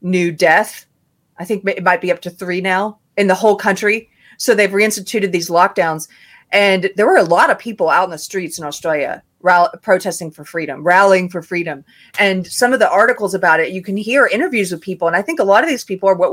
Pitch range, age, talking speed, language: 175-235 Hz, 30-49, 230 wpm, English